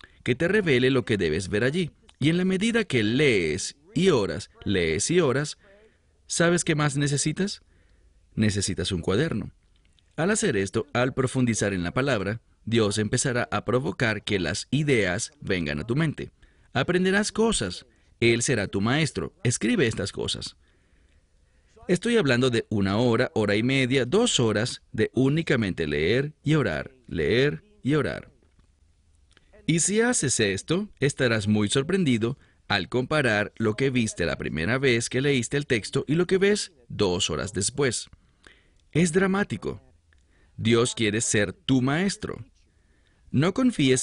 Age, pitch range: 40-59, 100-155 Hz